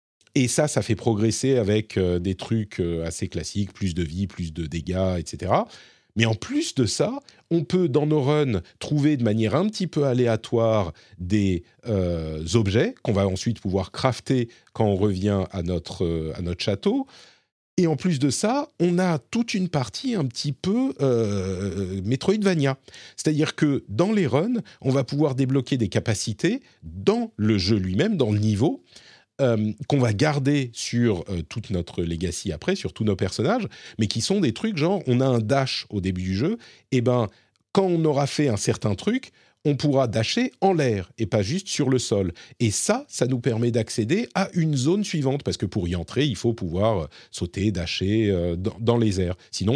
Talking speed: 190 wpm